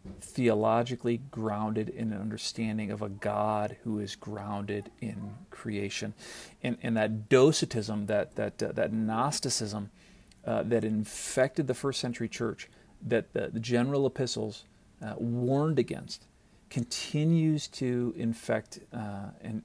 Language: English